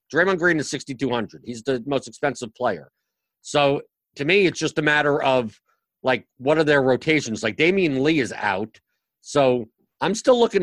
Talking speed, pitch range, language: 175 wpm, 120-155 Hz, English